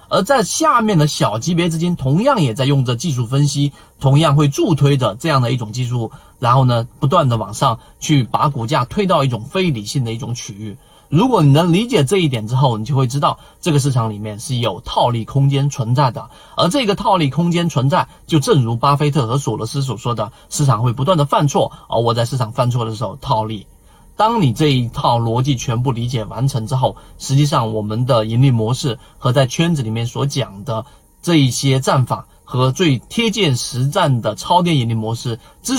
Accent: native